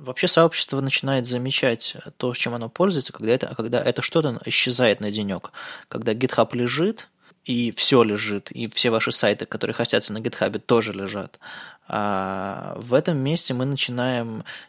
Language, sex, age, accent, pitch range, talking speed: Russian, male, 20-39, native, 110-130 Hz, 150 wpm